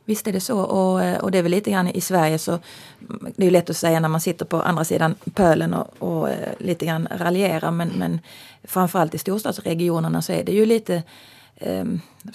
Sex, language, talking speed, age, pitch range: female, Finnish, 210 wpm, 30-49, 165-195 Hz